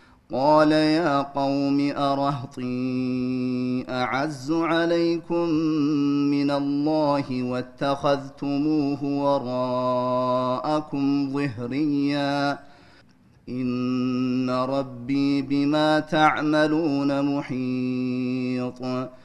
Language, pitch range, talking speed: Amharic, 125-150 Hz, 50 wpm